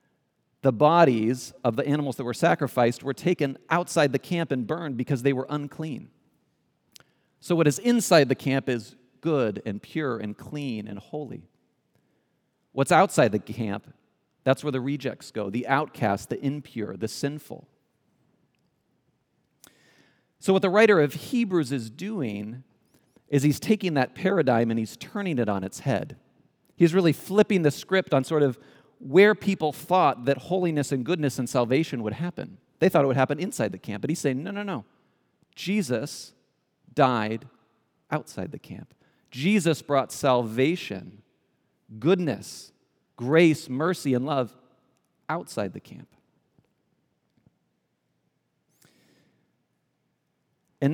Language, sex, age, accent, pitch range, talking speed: English, male, 40-59, American, 125-170 Hz, 140 wpm